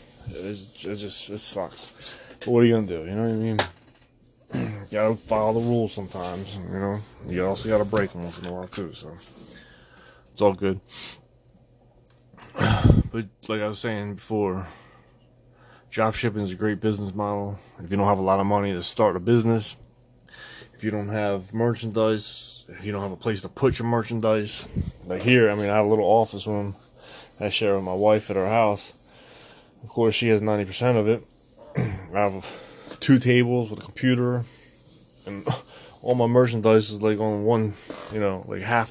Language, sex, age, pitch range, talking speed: English, male, 20-39, 95-115 Hz, 195 wpm